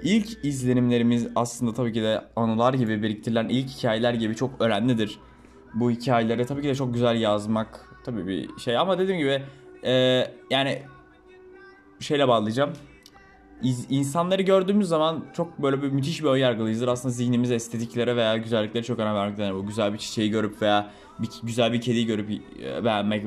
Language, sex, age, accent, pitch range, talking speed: Turkish, male, 20-39, native, 110-145 Hz, 165 wpm